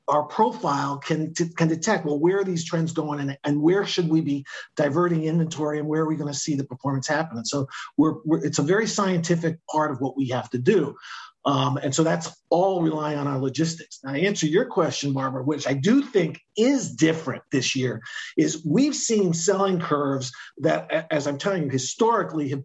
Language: English